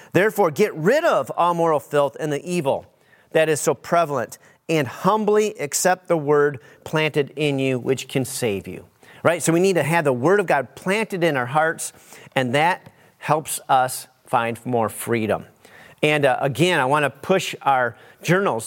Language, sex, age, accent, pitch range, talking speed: English, male, 40-59, American, 135-175 Hz, 180 wpm